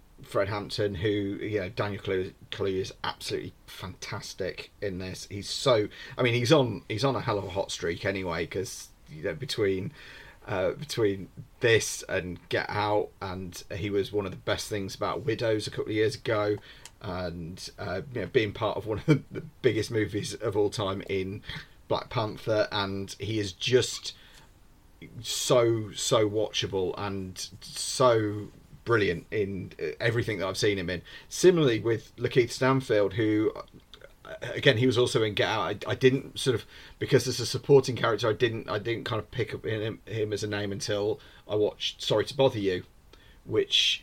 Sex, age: male, 30-49